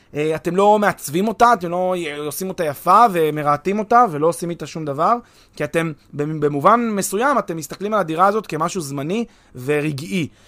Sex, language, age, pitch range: male, Hebrew, 30-49, 155-225 Hz